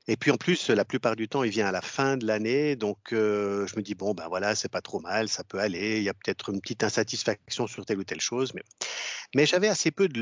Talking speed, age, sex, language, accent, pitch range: 280 wpm, 50-69, male, French, French, 105-140 Hz